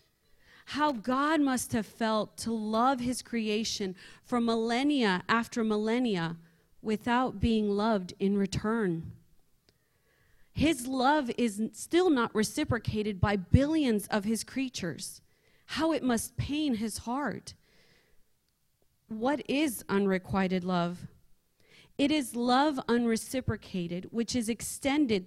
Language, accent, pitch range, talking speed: English, American, 200-245 Hz, 110 wpm